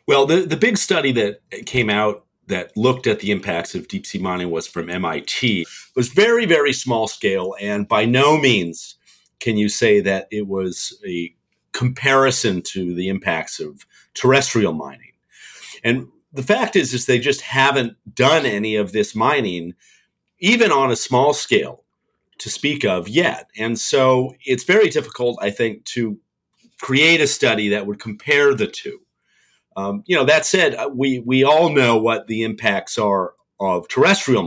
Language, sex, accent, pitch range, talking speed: English, male, American, 105-140 Hz, 165 wpm